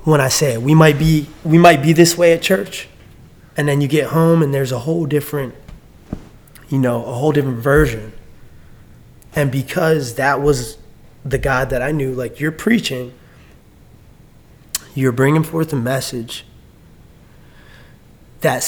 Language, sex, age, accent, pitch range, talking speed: English, male, 20-39, American, 125-165 Hz, 150 wpm